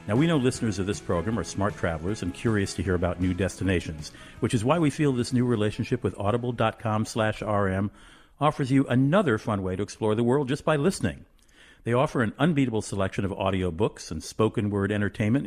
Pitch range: 95-130 Hz